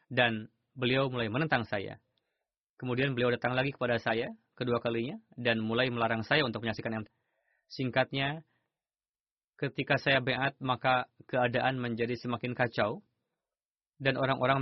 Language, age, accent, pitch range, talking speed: Indonesian, 20-39, native, 120-135 Hz, 125 wpm